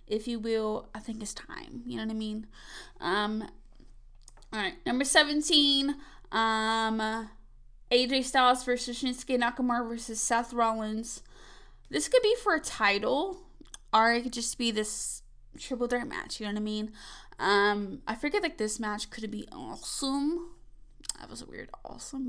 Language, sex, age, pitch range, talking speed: English, female, 20-39, 210-270 Hz, 160 wpm